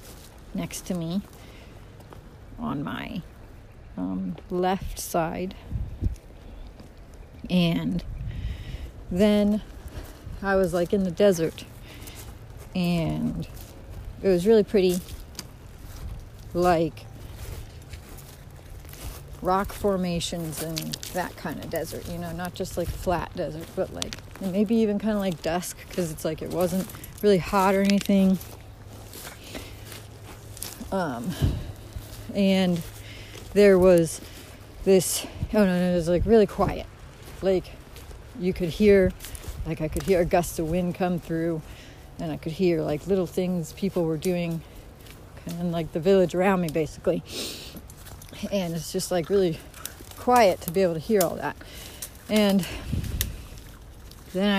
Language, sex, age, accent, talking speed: English, female, 40-59, American, 125 wpm